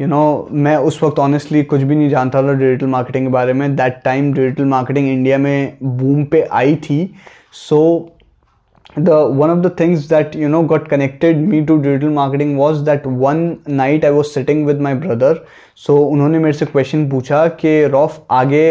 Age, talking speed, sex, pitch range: 20-39, 190 wpm, male, 140-160 Hz